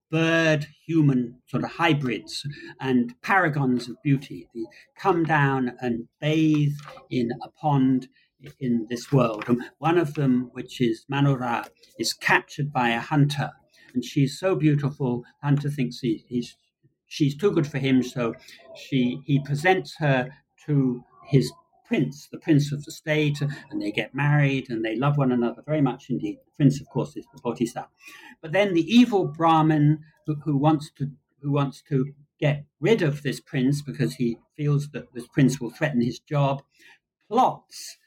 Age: 60-79